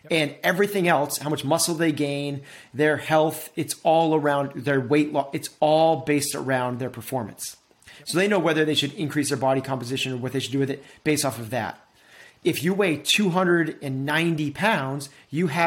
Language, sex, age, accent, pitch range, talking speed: English, male, 30-49, American, 135-165 Hz, 185 wpm